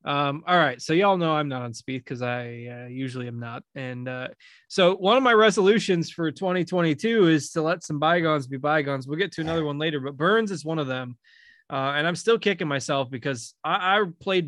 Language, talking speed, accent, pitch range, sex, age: English, 225 wpm, American, 140-180 Hz, male, 20-39